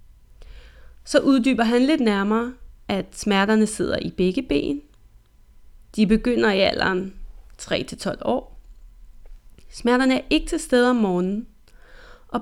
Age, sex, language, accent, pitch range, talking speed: 30-49, female, Danish, native, 190-255 Hz, 120 wpm